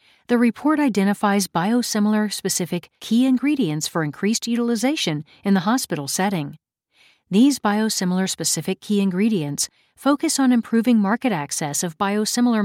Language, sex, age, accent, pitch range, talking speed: English, female, 40-59, American, 180-235 Hz, 115 wpm